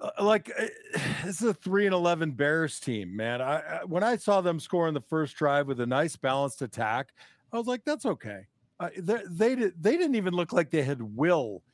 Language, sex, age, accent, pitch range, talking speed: English, male, 50-69, American, 135-185 Hz, 195 wpm